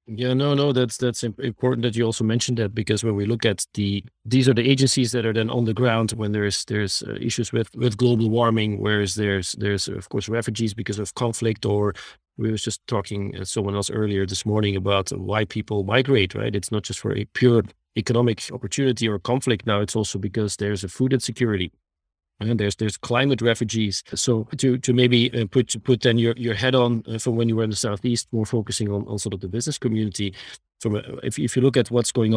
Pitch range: 105-125 Hz